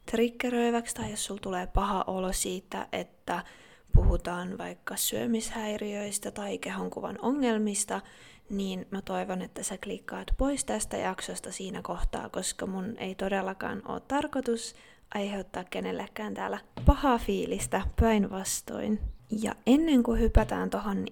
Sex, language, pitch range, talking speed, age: female, Finnish, 195-230 Hz, 120 wpm, 20-39